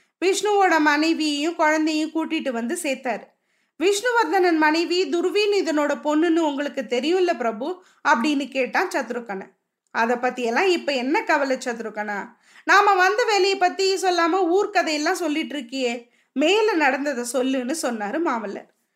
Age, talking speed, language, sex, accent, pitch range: 20-39, 115 wpm, Tamil, female, native, 275-345 Hz